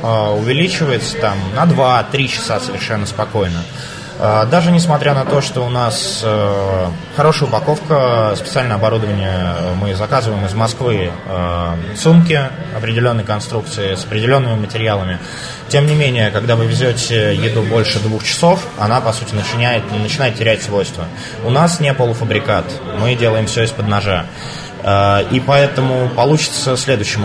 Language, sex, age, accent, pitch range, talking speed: Russian, male, 20-39, native, 110-145 Hz, 125 wpm